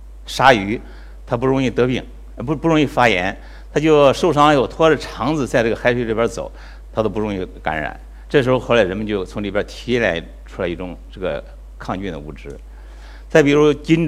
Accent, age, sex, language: native, 60-79, male, Chinese